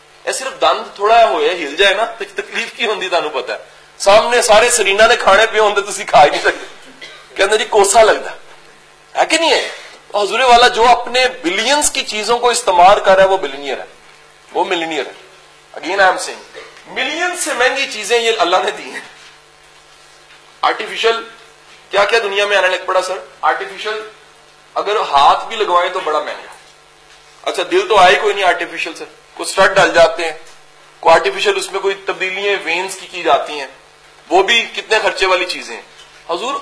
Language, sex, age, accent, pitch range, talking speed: English, male, 40-59, Indian, 190-260 Hz, 110 wpm